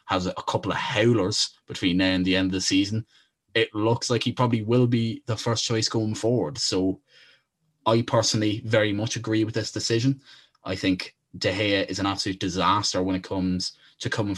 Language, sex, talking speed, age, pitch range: English, male, 195 wpm, 20-39, 95-110 Hz